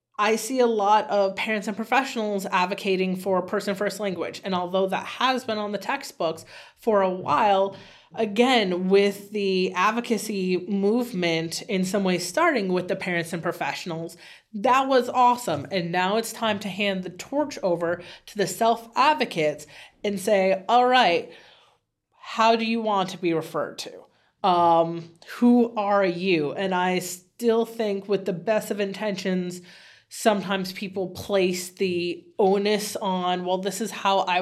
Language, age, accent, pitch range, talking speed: English, 30-49, American, 180-215 Hz, 155 wpm